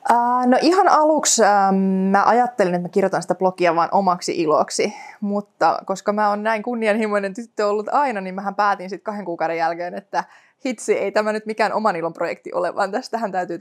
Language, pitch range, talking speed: Finnish, 185-245 Hz, 195 wpm